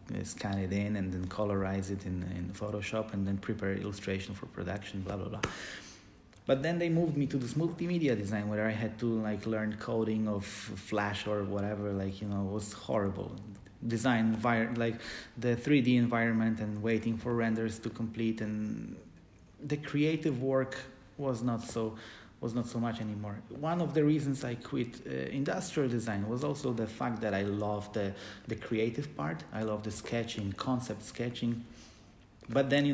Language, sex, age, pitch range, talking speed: English, male, 30-49, 100-120 Hz, 180 wpm